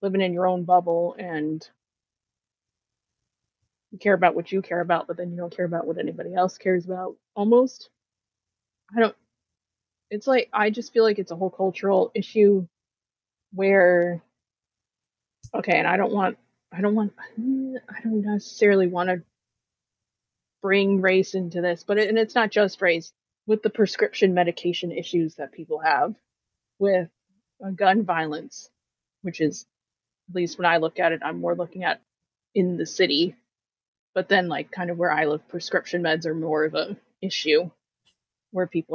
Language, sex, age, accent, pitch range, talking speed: English, female, 20-39, American, 165-195 Hz, 165 wpm